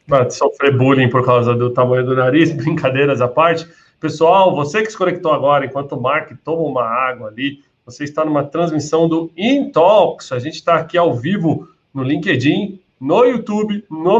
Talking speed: 175 wpm